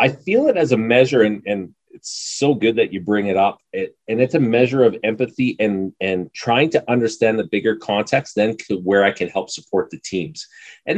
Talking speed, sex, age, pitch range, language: 225 wpm, male, 30-49, 100-125 Hz, English